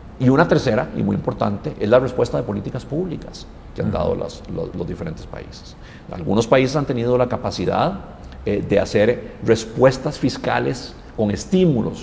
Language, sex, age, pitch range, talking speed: Spanish, male, 50-69, 105-135 Hz, 165 wpm